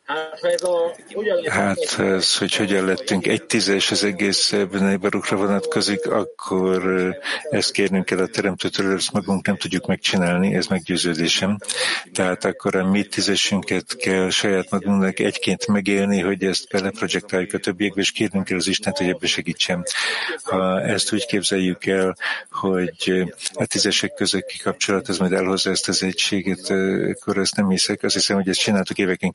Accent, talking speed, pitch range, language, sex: Czech, 150 wpm, 90-100 Hz, English, male